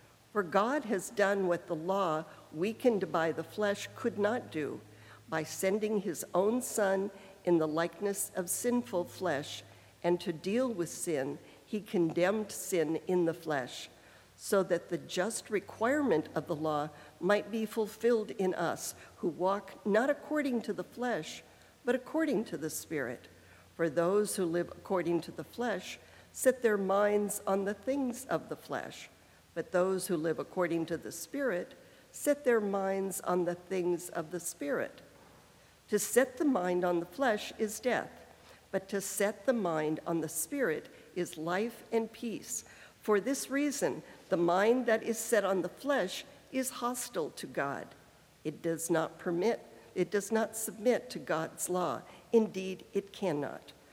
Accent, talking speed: American, 160 wpm